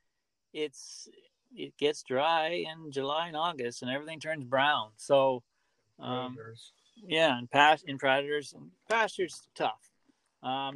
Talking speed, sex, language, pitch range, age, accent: 130 wpm, male, English, 120-150 Hz, 40-59, American